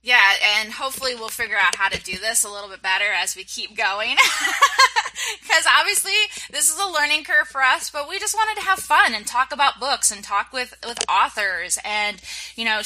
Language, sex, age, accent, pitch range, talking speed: English, female, 20-39, American, 195-260 Hz, 215 wpm